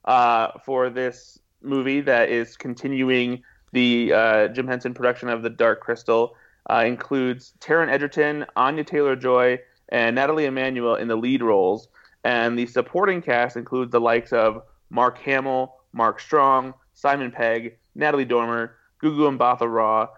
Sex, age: male, 30-49